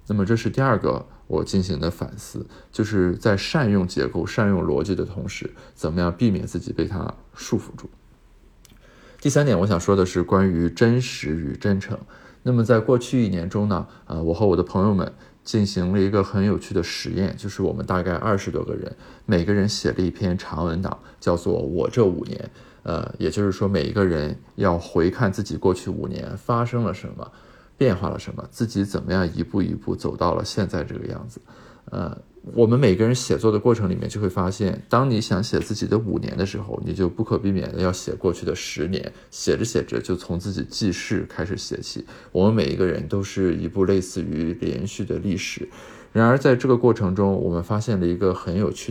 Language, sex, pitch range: Chinese, male, 90-110 Hz